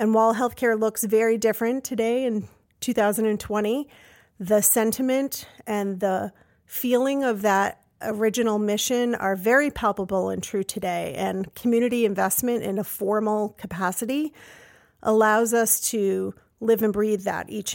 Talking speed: 130 wpm